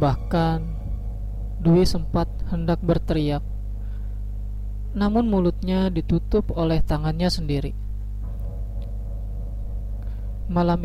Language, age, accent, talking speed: Indonesian, 20-39, native, 65 wpm